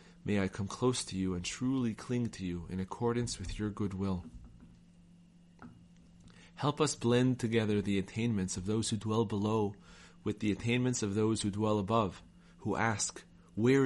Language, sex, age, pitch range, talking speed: English, male, 40-59, 95-120 Hz, 170 wpm